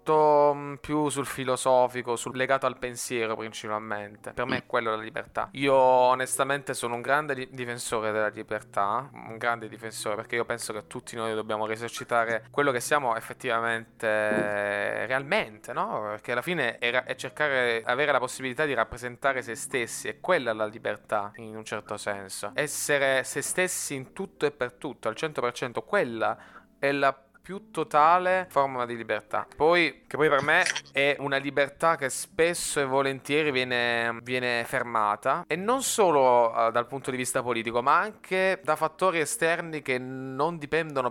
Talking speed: 160 wpm